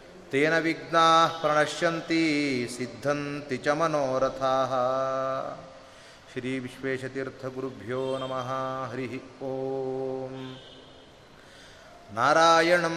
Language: Kannada